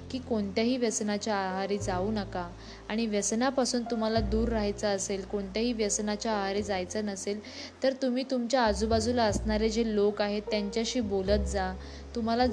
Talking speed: 145 wpm